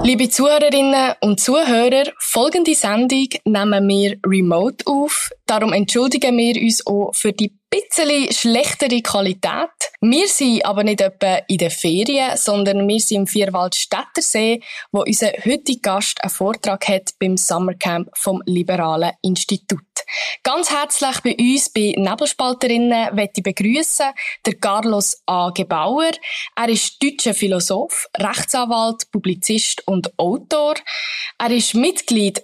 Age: 20-39